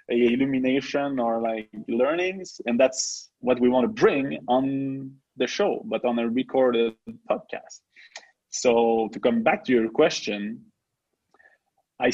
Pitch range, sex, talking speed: 120-180 Hz, male, 135 wpm